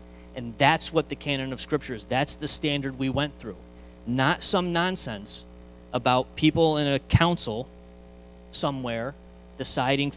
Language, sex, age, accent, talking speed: English, male, 30-49, American, 140 wpm